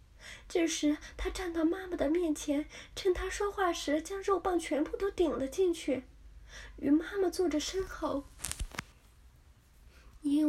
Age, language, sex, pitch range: 20-39, Chinese, female, 280-345 Hz